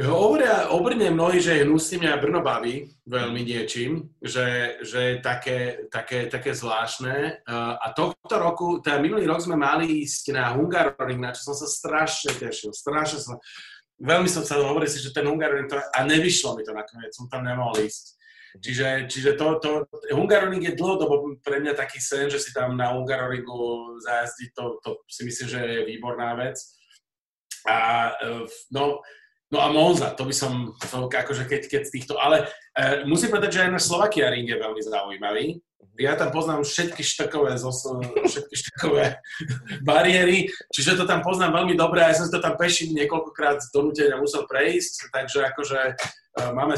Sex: male